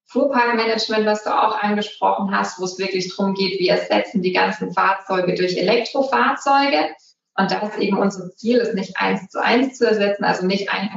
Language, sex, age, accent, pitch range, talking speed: German, female, 20-39, German, 190-230 Hz, 190 wpm